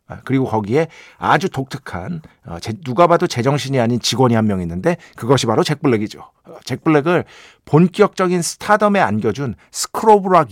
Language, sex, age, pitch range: Korean, male, 50-69, 115-180 Hz